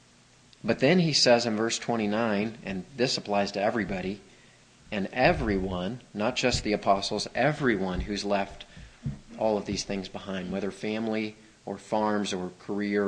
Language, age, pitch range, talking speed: English, 30-49, 100-115 Hz, 145 wpm